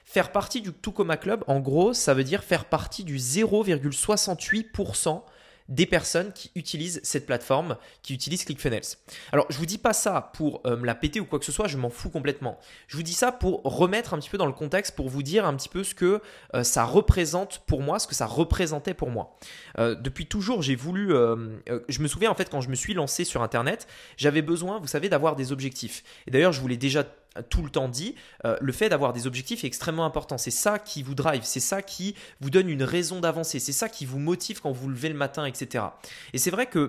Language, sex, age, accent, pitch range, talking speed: French, male, 20-39, French, 135-185 Hz, 240 wpm